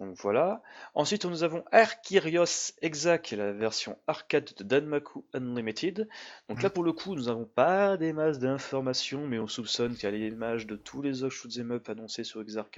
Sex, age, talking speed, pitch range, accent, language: male, 20-39, 190 wpm, 110-145 Hz, French, French